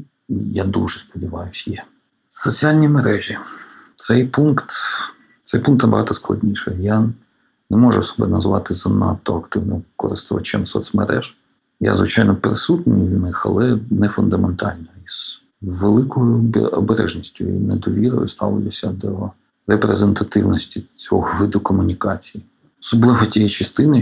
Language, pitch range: Ukrainian, 100-115 Hz